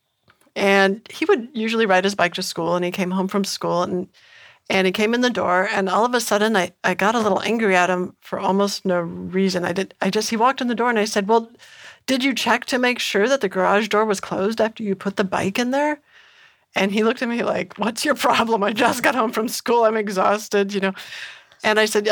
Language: English